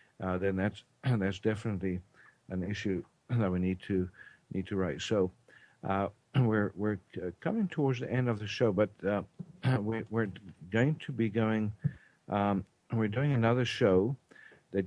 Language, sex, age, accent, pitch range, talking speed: English, male, 60-79, American, 95-115 Hz, 160 wpm